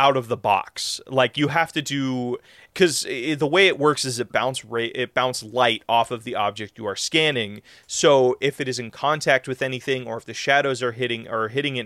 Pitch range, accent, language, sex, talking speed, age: 120-165 Hz, American, English, male, 225 wpm, 30-49